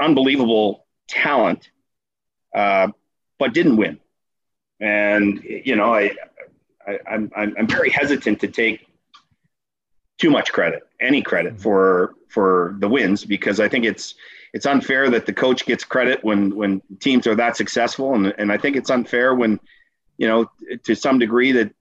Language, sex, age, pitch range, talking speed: English, male, 40-59, 105-135 Hz, 155 wpm